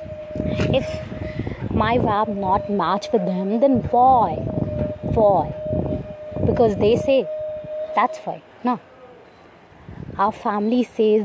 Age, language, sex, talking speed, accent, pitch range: 20-39, Hindi, female, 100 wpm, native, 185-240 Hz